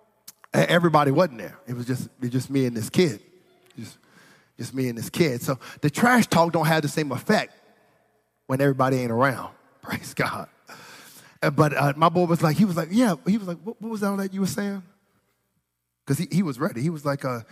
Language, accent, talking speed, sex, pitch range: English, American, 220 wpm, male, 135-220 Hz